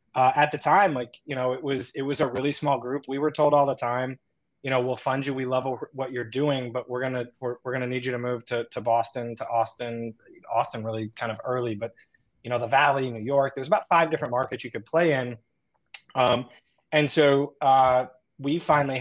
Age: 20-39